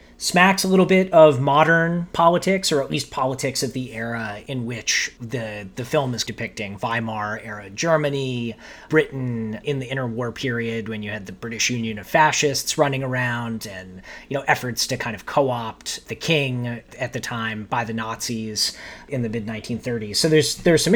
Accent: American